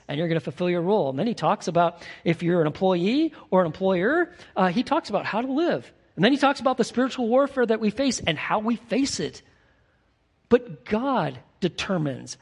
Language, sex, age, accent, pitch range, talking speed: English, male, 40-59, American, 165-250 Hz, 215 wpm